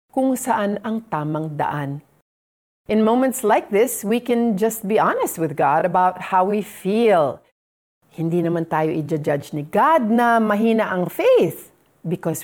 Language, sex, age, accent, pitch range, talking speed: Filipino, female, 40-59, native, 165-235 Hz, 150 wpm